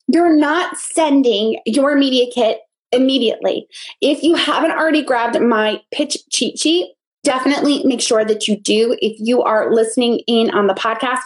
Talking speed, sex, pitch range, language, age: 160 wpm, female, 235-305 Hz, English, 20-39